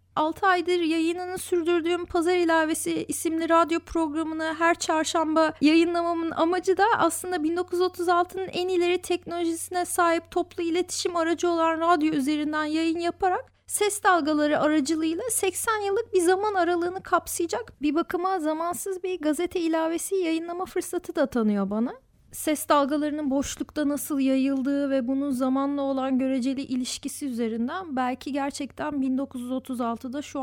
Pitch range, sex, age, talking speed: 300-370 Hz, female, 30-49, 125 wpm